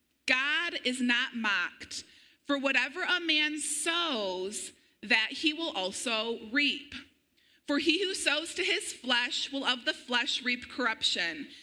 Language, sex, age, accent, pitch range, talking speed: English, female, 30-49, American, 255-310 Hz, 140 wpm